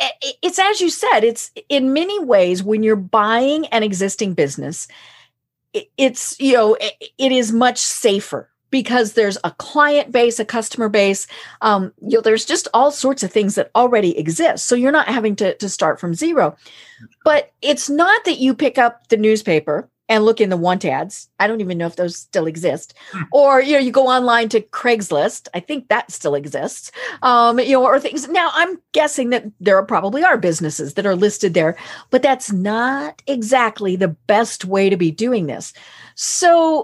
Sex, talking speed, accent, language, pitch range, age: female, 185 wpm, American, English, 205-280 Hz, 40-59